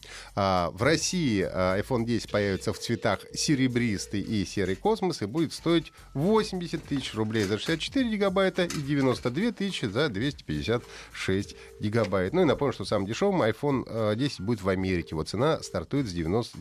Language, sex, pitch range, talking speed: Russian, male, 105-145 Hz, 150 wpm